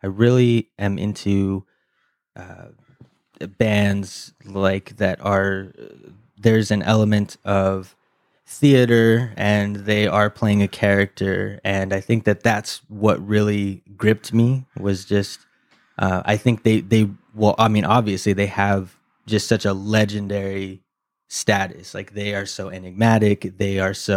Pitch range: 95-110 Hz